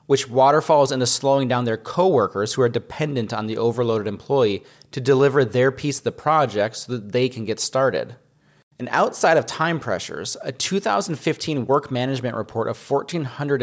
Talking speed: 170 wpm